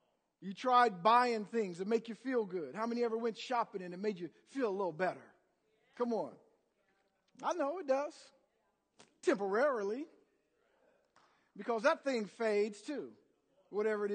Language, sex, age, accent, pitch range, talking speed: English, male, 50-69, American, 185-255 Hz, 155 wpm